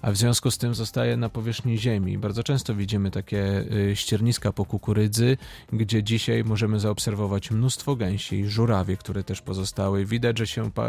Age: 40-59